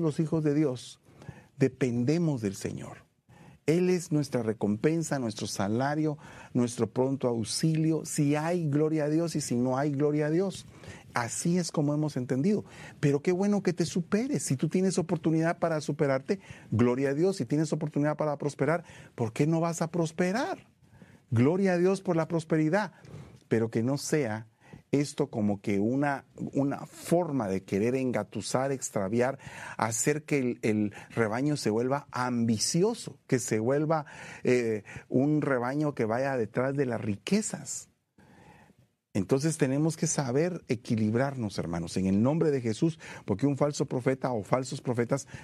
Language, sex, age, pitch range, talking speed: Spanish, male, 40-59, 120-160 Hz, 155 wpm